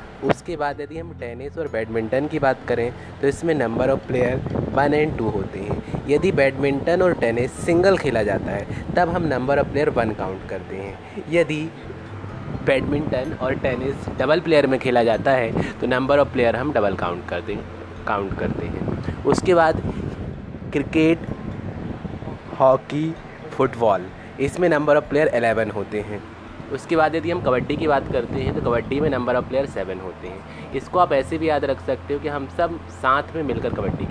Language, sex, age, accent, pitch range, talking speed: Hindi, male, 20-39, native, 110-150 Hz, 185 wpm